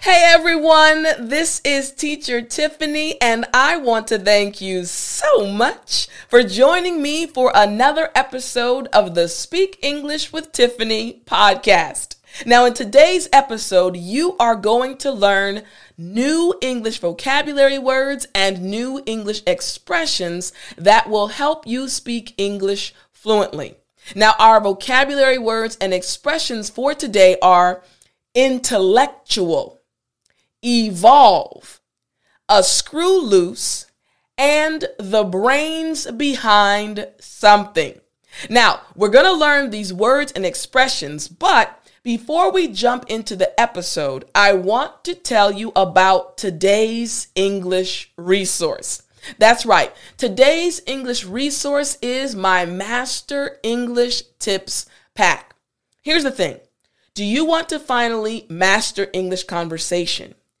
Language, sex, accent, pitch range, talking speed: English, female, American, 200-285 Hz, 115 wpm